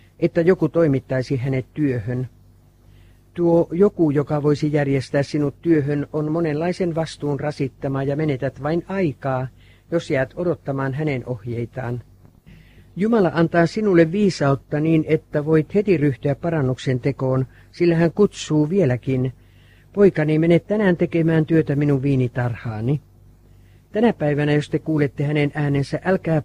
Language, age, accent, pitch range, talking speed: Finnish, 50-69, native, 120-165 Hz, 125 wpm